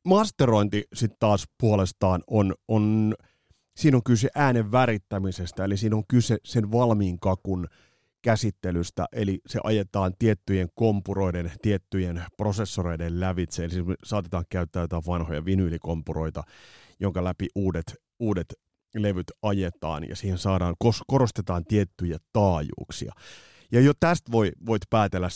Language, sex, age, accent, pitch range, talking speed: Finnish, male, 30-49, native, 90-115 Hz, 120 wpm